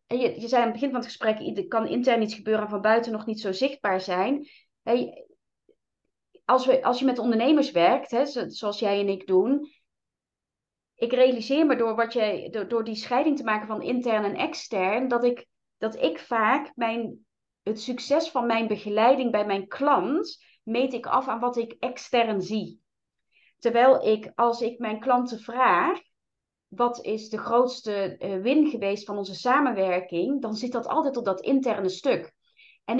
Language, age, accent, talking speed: Dutch, 30-49, Dutch, 165 wpm